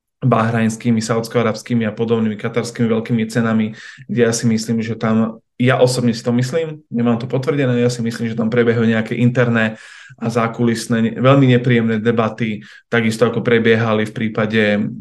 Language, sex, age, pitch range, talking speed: Slovak, male, 20-39, 115-125 Hz, 160 wpm